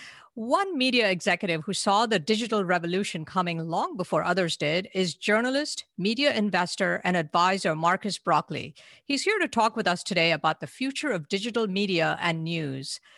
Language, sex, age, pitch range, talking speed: English, female, 50-69, 175-220 Hz, 165 wpm